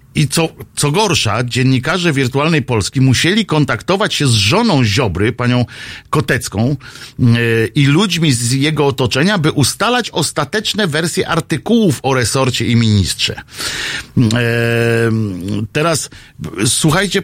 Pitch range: 125-160 Hz